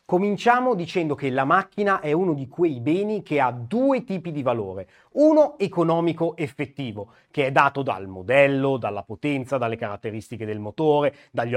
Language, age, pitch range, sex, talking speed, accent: Italian, 30-49, 130-185 Hz, male, 160 wpm, native